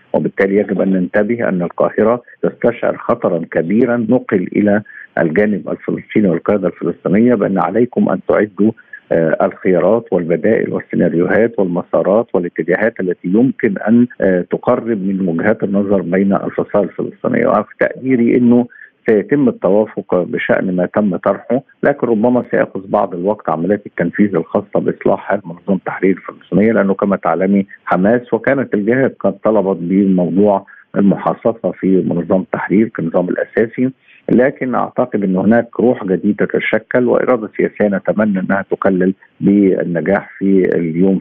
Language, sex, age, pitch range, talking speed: Arabic, male, 50-69, 95-115 Hz, 125 wpm